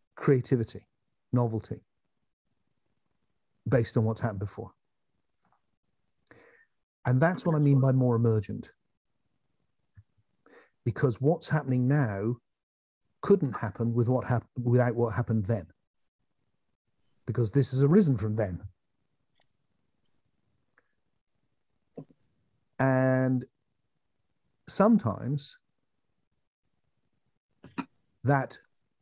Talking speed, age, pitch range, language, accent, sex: 75 wpm, 50-69, 110-135 Hz, English, British, male